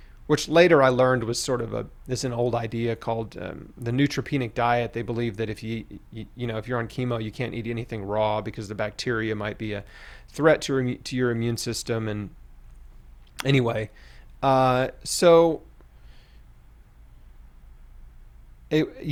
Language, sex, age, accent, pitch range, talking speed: English, male, 30-49, American, 110-135 Hz, 165 wpm